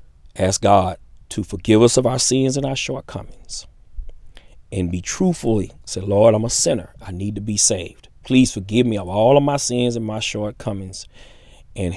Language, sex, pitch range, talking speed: English, male, 90-110 Hz, 180 wpm